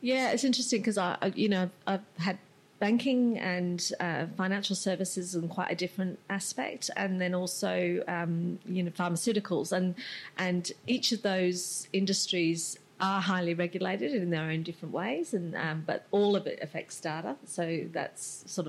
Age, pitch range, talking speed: 40-59, 165-185 Hz, 175 wpm